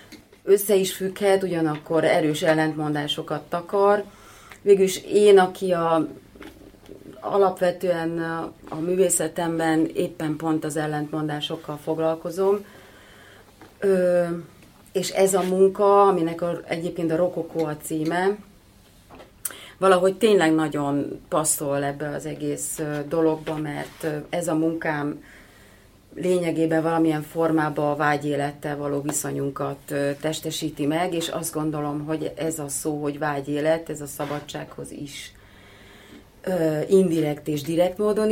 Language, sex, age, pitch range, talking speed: Hungarian, female, 30-49, 145-175 Hz, 110 wpm